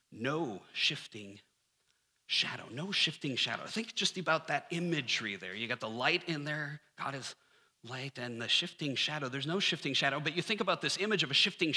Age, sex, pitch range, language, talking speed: 30-49, male, 140-195 Hz, English, 195 wpm